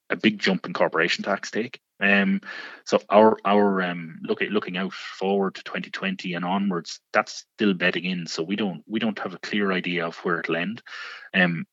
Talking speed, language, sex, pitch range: 200 wpm, English, male, 85-100 Hz